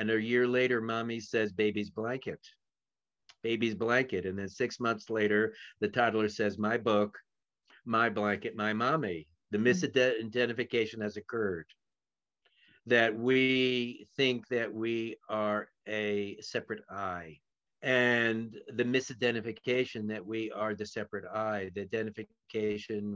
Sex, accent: male, American